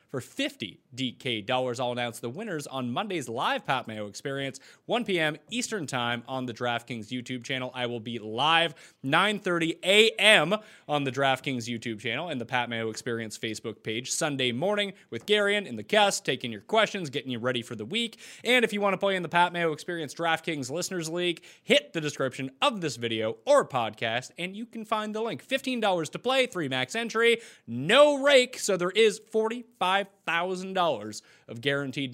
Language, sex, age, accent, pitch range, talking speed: English, male, 30-49, American, 130-220 Hz, 190 wpm